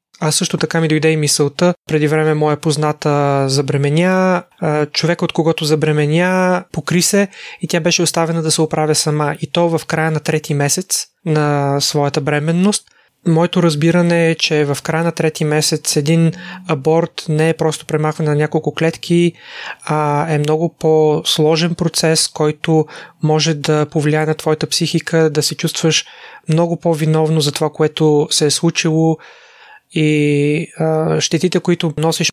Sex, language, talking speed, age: male, Bulgarian, 150 wpm, 30-49